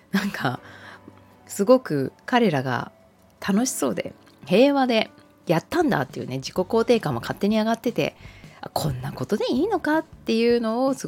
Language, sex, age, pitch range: Japanese, female, 20-39, 130-205 Hz